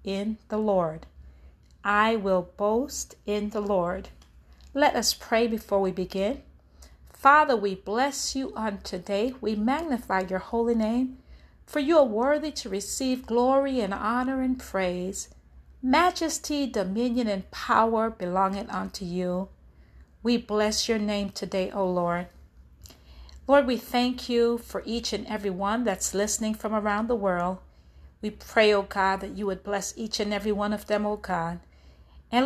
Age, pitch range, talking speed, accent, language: 40-59, 185-240 Hz, 155 wpm, American, English